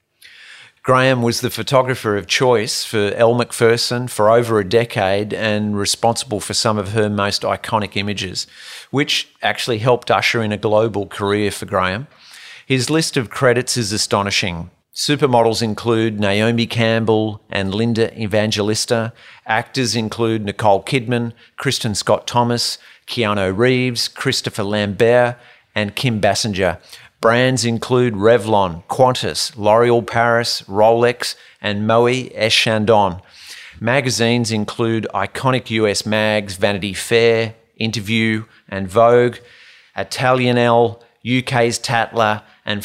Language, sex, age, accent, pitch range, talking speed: English, male, 40-59, Australian, 105-120 Hz, 120 wpm